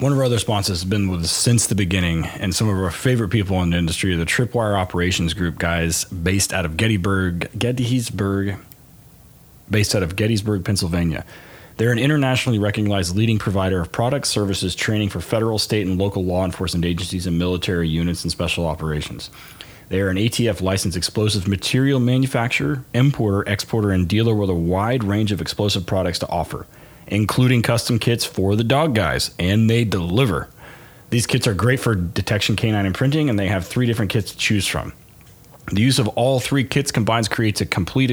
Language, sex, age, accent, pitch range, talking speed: English, male, 30-49, American, 95-120 Hz, 185 wpm